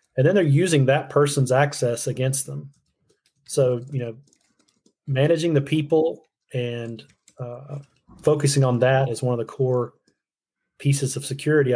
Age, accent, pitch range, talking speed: 30-49, American, 120-140 Hz, 145 wpm